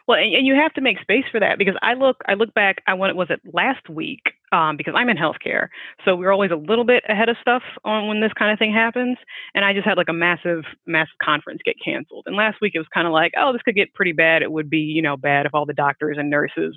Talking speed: 285 wpm